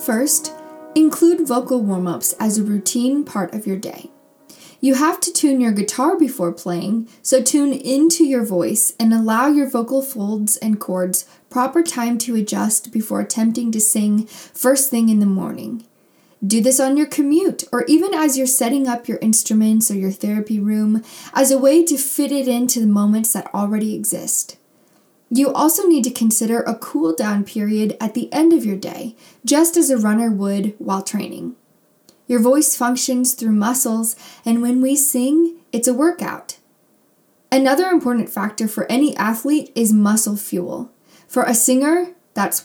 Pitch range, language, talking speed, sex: 215-270 Hz, English, 165 wpm, female